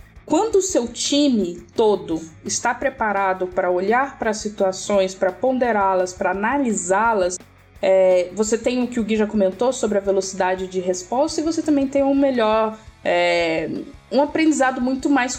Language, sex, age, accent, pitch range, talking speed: Portuguese, female, 10-29, Brazilian, 200-275 Hz, 155 wpm